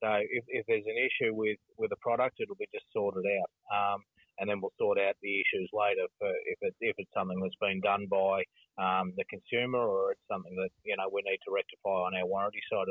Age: 30-49